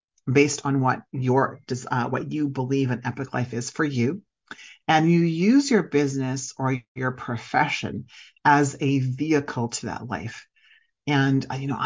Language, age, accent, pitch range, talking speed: English, 40-59, American, 125-150 Hz, 160 wpm